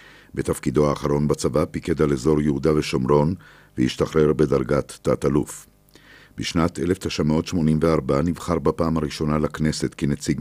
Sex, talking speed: male, 105 wpm